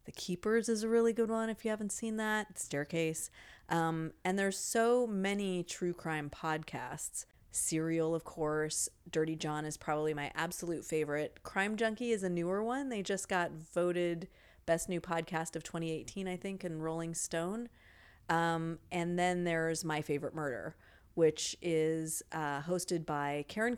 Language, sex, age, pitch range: English, female, 30-49, 160-195 Hz